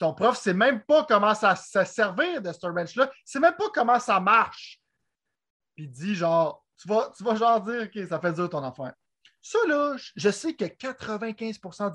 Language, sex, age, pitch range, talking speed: French, male, 30-49, 165-230 Hz, 205 wpm